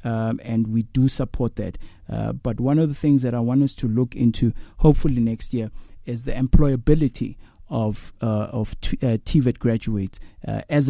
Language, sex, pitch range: English, male, 110-125 Hz